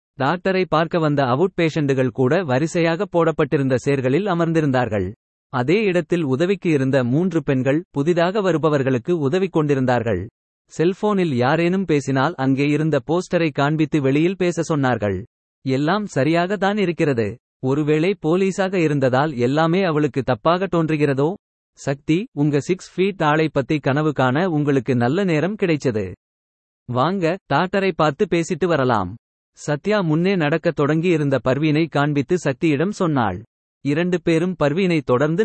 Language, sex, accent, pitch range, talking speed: Tamil, male, native, 135-170 Hz, 115 wpm